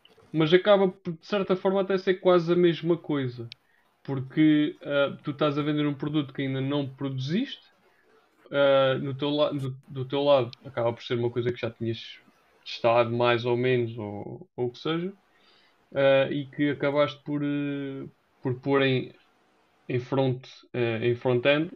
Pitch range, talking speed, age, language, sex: 120-145 Hz, 145 wpm, 20-39, Portuguese, male